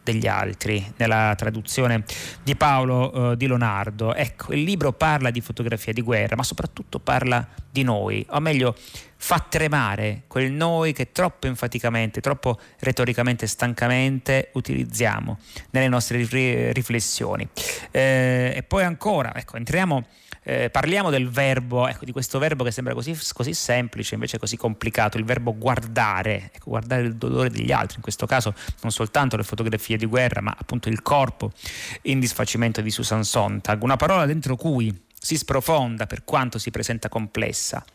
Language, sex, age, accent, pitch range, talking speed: Italian, male, 30-49, native, 110-135 Hz, 150 wpm